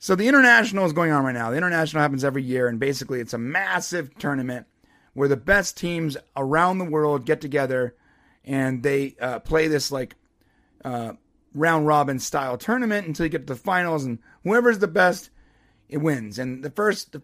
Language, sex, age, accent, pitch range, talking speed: English, male, 30-49, American, 135-185 Hz, 190 wpm